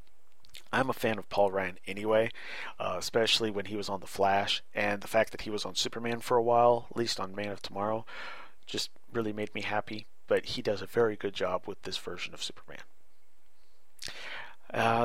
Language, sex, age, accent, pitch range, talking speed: English, male, 30-49, American, 110-135 Hz, 200 wpm